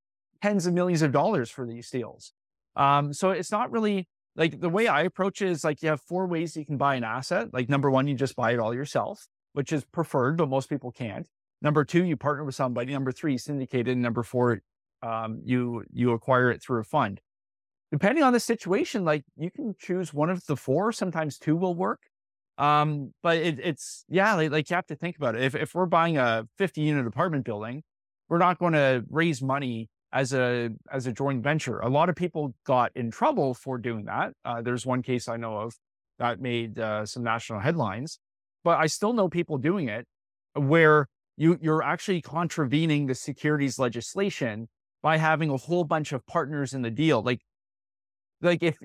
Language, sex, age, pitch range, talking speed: English, male, 30-49, 125-170 Hz, 205 wpm